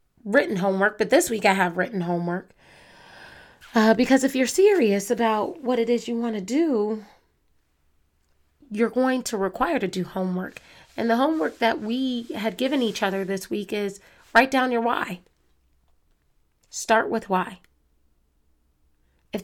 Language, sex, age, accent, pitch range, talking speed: English, female, 30-49, American, 195-240 Hz, 150 wpm